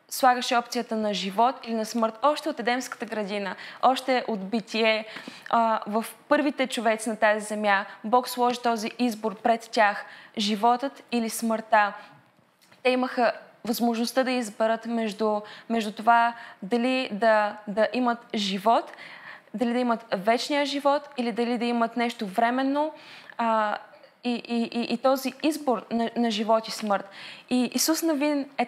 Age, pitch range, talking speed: 20-39, 220-255 Hz, 140 wpm